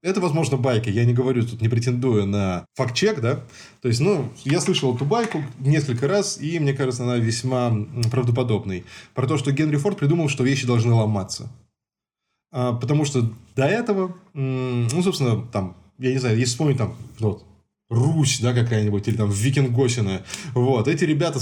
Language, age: Russian, 20-39